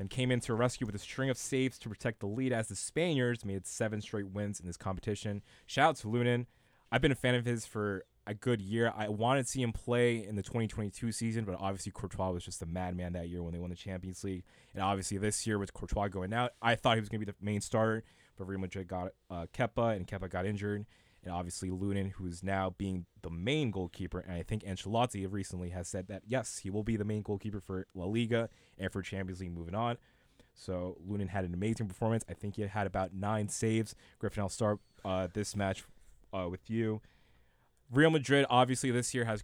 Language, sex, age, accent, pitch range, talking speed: English, male, 20-39, American, 95-120 Hz, 235 wpm